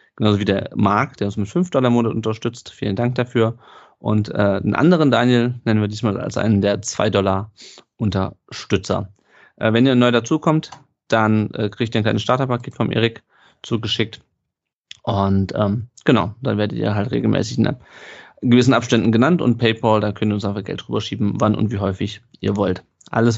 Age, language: 30-49, German